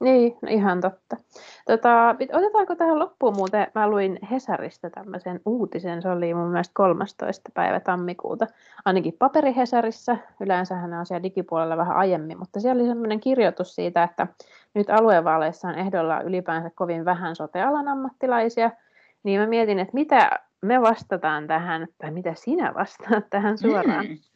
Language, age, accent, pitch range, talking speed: Finnish, 30-49, native, 175-235 Hz, 145 wpm